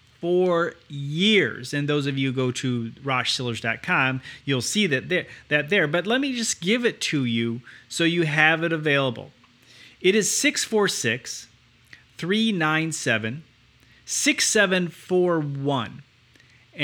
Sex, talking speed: male, 115 wpm